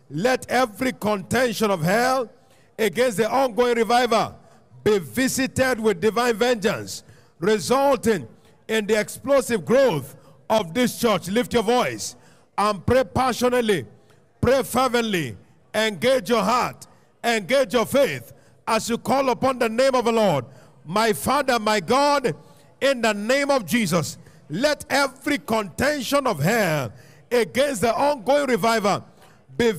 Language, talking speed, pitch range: English, 130 wpm, 210-265 Hz